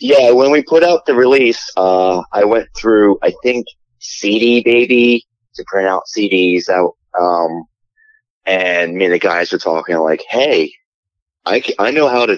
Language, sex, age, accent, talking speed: English, male, 30-49, American, 175 wpm